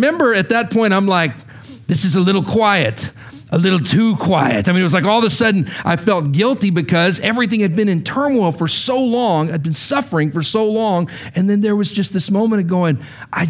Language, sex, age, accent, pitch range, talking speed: English, male, 50-69, American, 155-225 Hz, 230 wpm